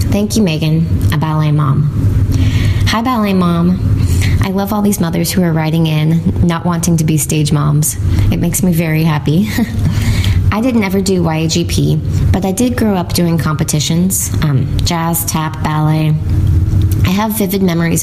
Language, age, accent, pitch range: English, 20-39, American, 110-165 Hz